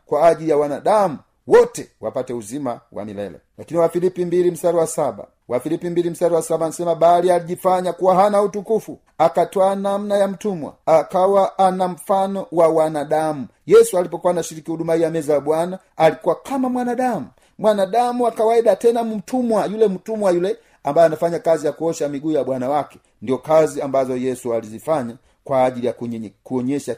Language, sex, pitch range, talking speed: Swahili, male, 140-190 Hz, 155 wpm